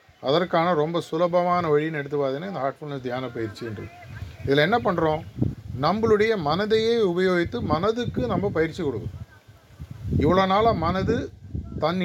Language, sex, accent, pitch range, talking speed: Tamil, male, native, 140-185 Hz, 120 wpm